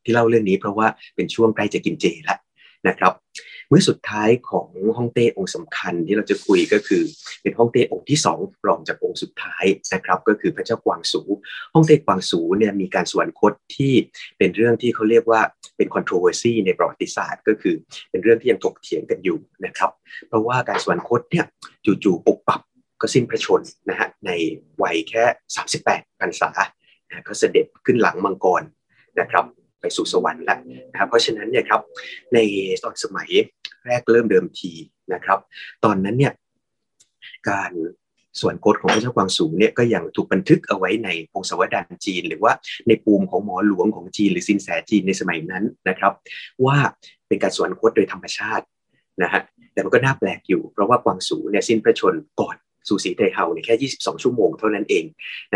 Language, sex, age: Thai, male, 30-49